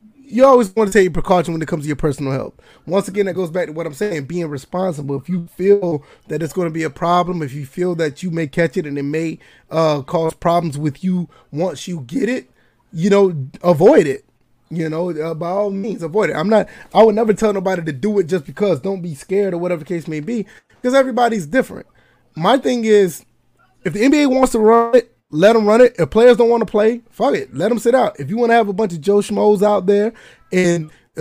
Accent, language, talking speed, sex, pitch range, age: American, English, 250 wpm, male, 170-220 Hz, 20-39